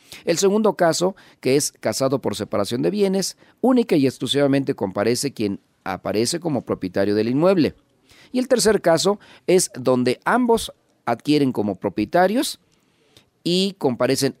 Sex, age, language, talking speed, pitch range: male, 40-59, Spanish, 135 wpm, 115-165 Hz